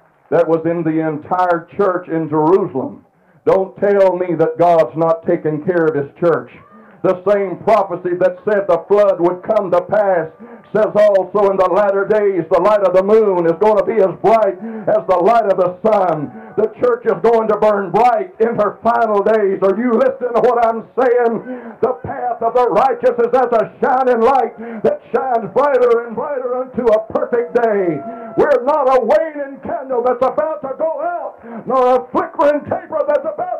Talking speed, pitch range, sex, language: 190 wpm, 200-290 Hz, male, English